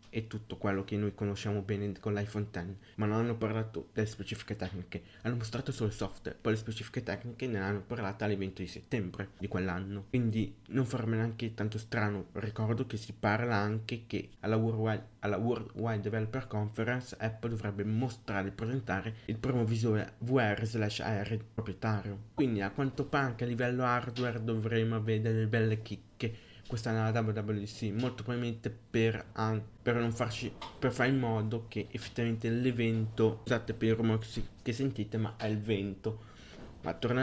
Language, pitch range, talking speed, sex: Italian, 105-115 Hz, 170 wpm, male